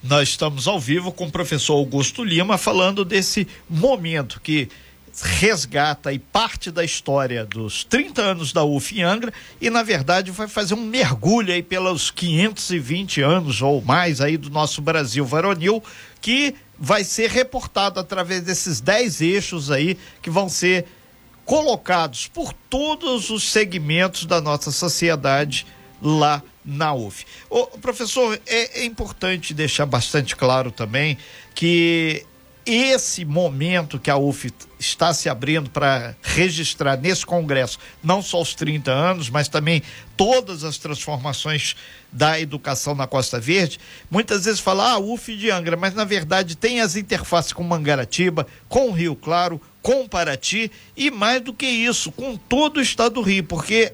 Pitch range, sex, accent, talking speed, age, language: 145-205 Hz, male, Brazilian, 150 wpm, 50-69, Portuguese